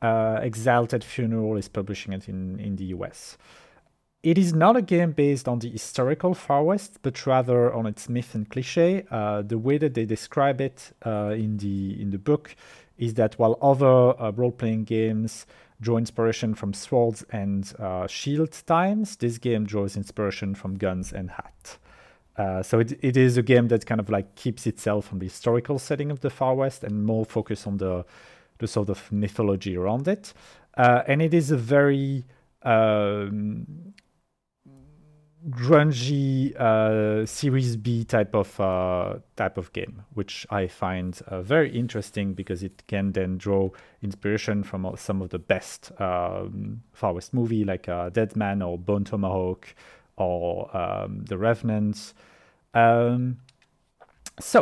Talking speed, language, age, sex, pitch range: 165 wpm, English, 40-59, male, 100-130 Hz